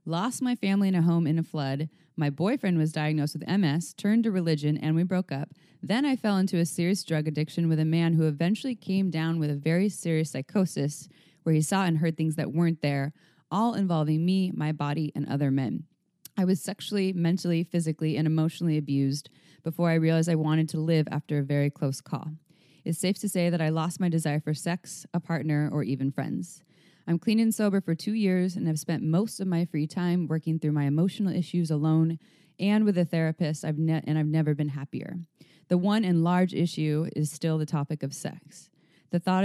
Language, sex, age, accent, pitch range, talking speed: English, female, 20-39, American, 155-185 Hz, 210 wpm